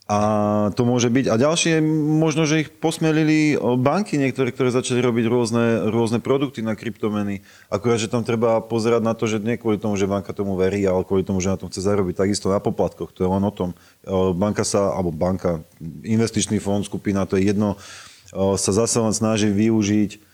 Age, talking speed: 30-49, 195 wpm